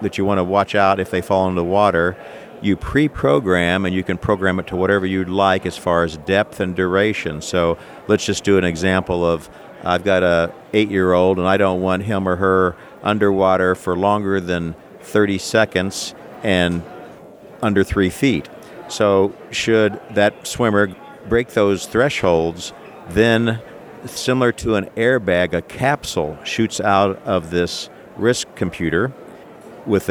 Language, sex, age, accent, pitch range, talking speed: English, male, 50-69, American, 90-105 Hz, 155 wpm